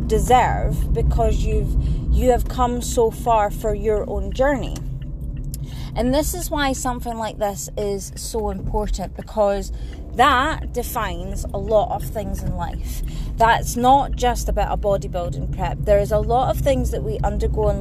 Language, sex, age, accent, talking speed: English, female, 20-39, British, 160 wpm